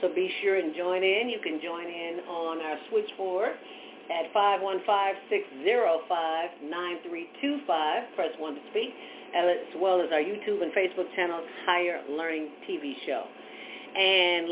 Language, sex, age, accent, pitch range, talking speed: English, female, 50-69, American, 140-185 Hz, 130 wpm